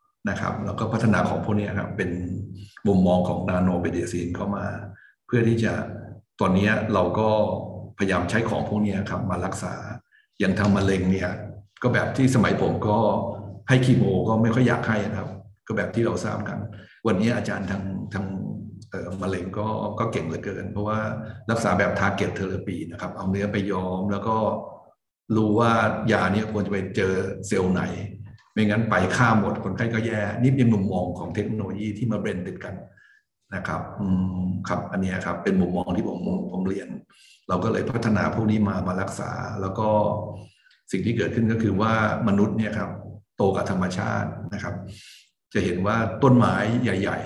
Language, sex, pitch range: Thai, male, 95-110 Hz